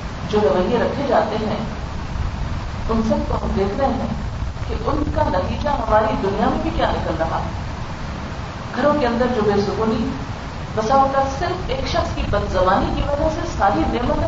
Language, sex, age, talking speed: Urdu, female, 40-59, 170 wpm